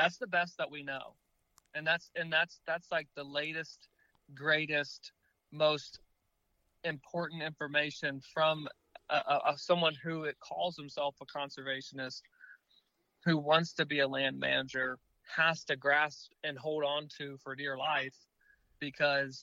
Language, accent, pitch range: English, American, 135-155 Hz